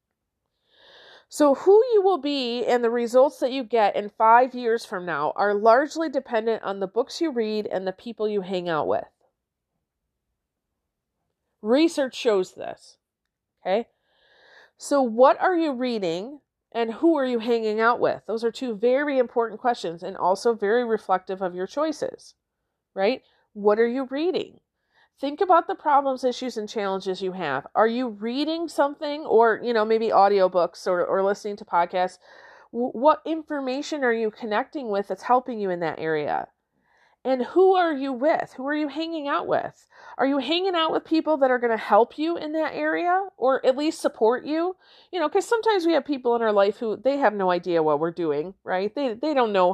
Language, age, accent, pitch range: English, 40-59, American, 200-290 Hz